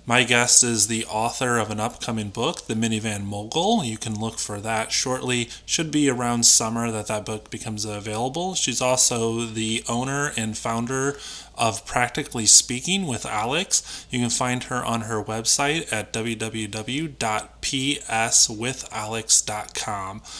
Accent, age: American, 20-39